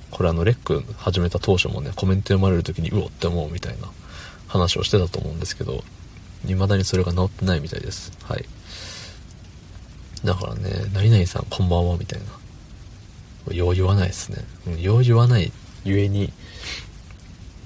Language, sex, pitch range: Japanese, male, 90-105 Hz